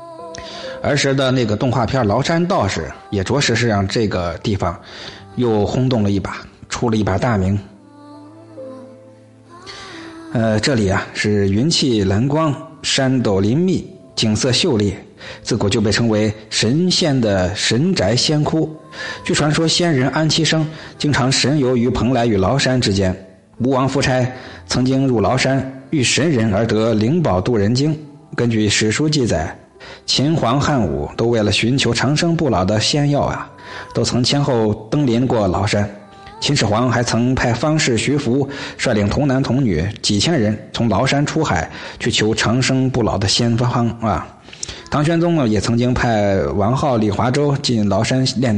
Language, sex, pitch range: Chinese, male, 105-140 Hz